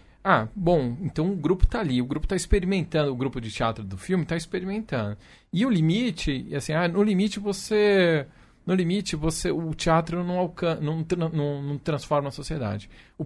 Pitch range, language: 125-180 Hz, Portuguese